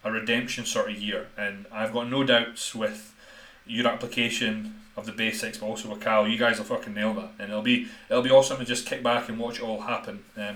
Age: 30-49